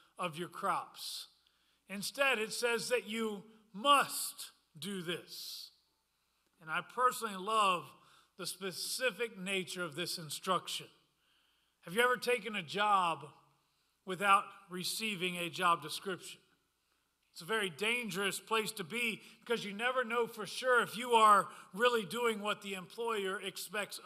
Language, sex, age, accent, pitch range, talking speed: English, male, 40-59, American, 190-245 Hz, 135 wpm